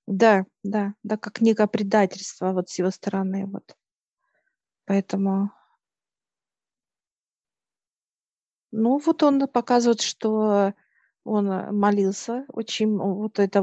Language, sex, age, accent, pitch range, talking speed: Russian, female, 50-69, native, 195-220 Hz, 95 wpm